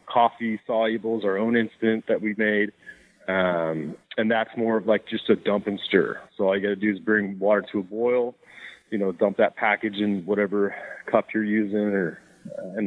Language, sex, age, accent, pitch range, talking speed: English, male, 30-49, American, 105-125 Hz, 205 wpm